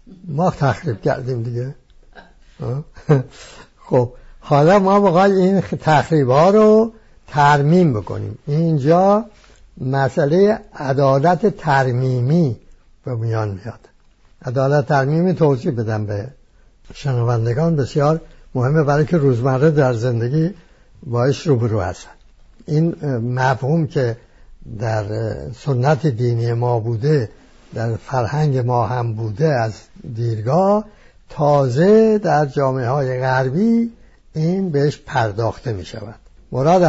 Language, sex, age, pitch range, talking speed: English, male, 60-79, 125-160 Hz, 100 wpm